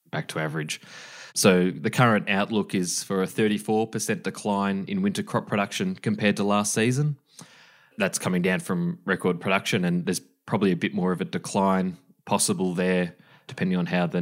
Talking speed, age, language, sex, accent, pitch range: 170 wpm, 20-39, English, male, Australian, 90-130 Hz